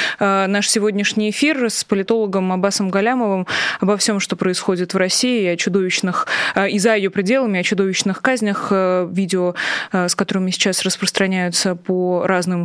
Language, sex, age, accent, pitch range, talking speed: Russian, female, 20-39, native, 180-210 Hz, 140 wpm